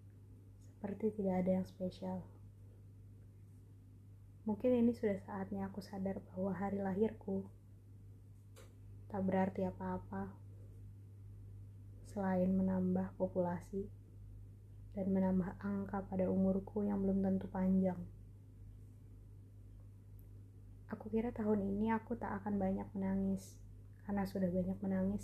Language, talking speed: Indonesian, 100 wpm